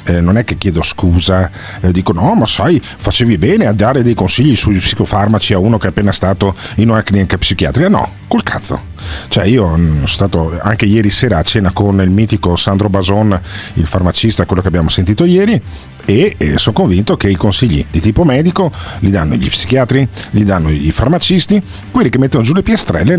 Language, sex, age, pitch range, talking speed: Italian, male, 40-59, 90-115 Hz, 195 wpm